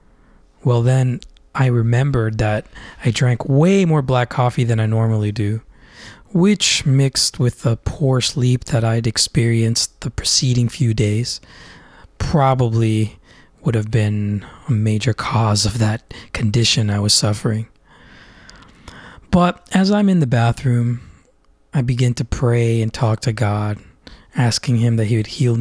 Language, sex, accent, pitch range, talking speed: English, male, American, 105-130 Hz, 145 wpm